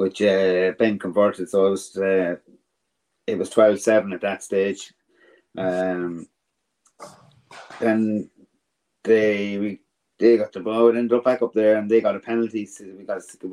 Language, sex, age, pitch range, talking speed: English, male, 30-49, 90-110 Hz, 165 wpm